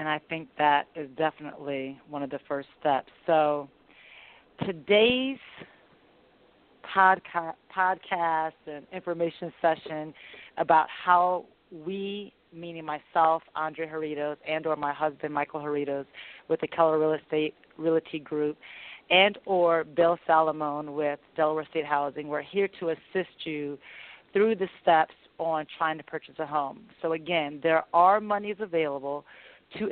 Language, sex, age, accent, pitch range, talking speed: English, female, 40-59, American, 150-175 Hz, 135 wpm